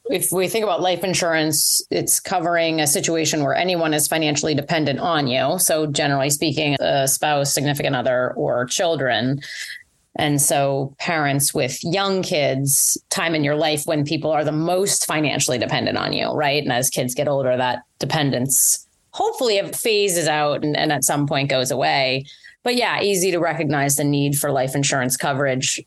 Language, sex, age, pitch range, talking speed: English, female, 30-49, 140-160 Hz, 175 wpm